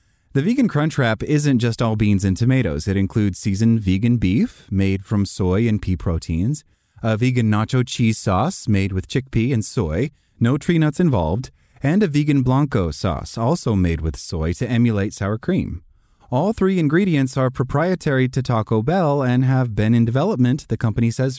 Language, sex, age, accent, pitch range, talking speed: English, male, 30-49, American, 100-130 Hz, 180 wpm